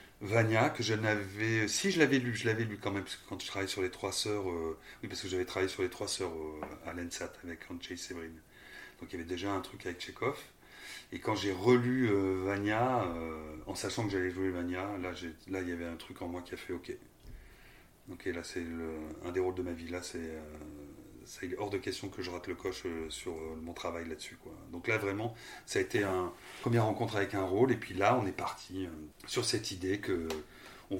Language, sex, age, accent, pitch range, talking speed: French, male, 30-49, French, 85-100 Hz, 240 wpm